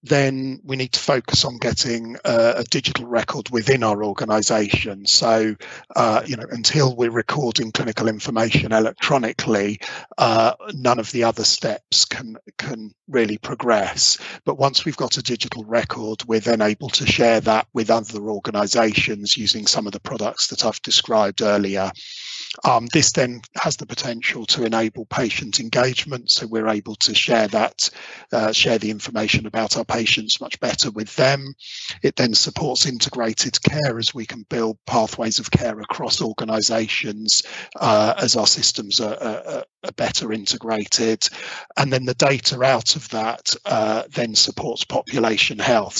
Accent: British